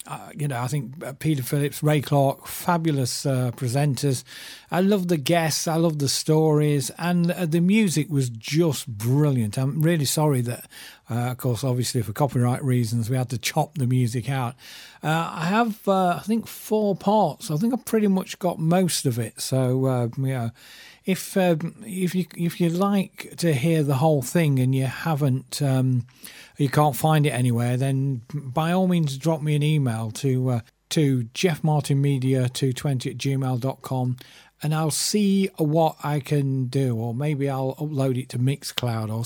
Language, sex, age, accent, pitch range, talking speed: English, male, 40-59, British, 130-160 Hz, 185 wpm